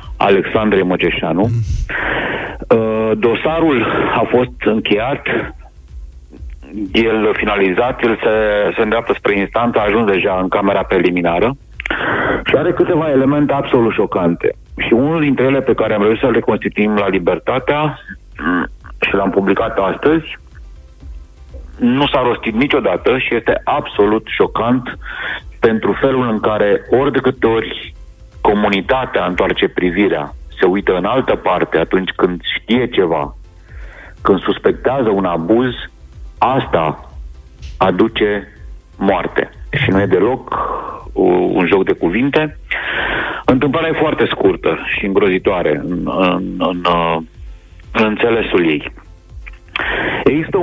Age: 50-69